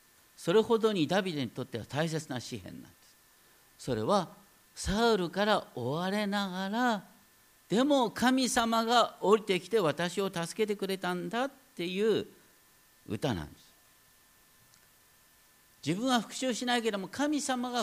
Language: Japanese